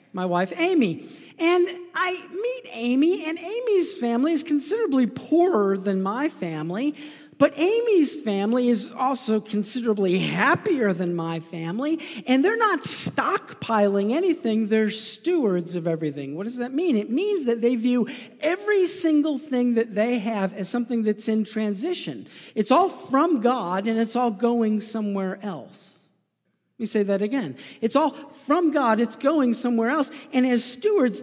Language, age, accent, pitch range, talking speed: English, 50-69, American, 205-295 Hz, 155 wpm